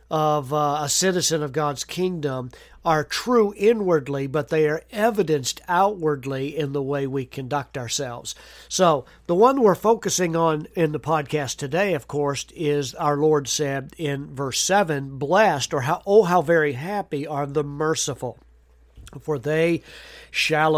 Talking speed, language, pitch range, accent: 155 wpm, English, 140-165 Hz, American